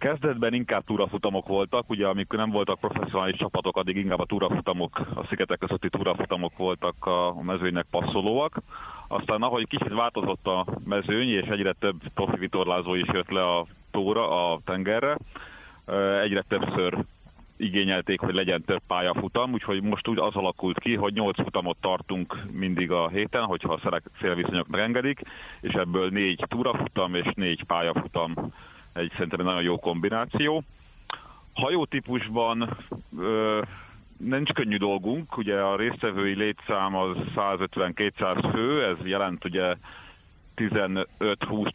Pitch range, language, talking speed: 90-105 Hz, Hungarian, 135 wpm